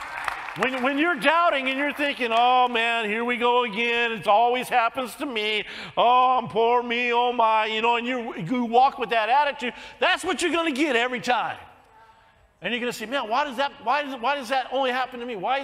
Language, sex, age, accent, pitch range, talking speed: English, male, 50-69, American, 210-270 Hz, 210 wpm